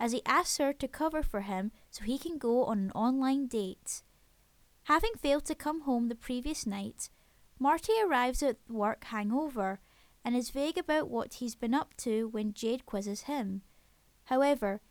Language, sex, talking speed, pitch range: English, female, 175 wpm, 220-295 Hz